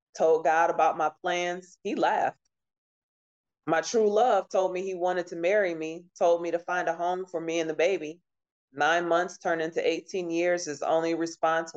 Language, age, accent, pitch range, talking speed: English, 20-39, American, 160-180 Hz, 190 wpm